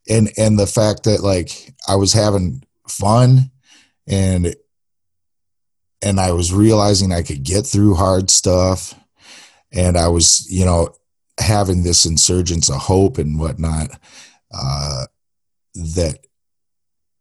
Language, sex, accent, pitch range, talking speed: English, male, American, 80-100 Hz, 120 wpm